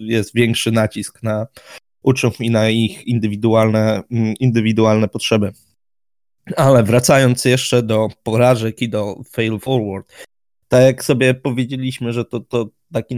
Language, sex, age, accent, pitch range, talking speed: Polish, male, 20-39, native, 115-140 Hz, 125 wpm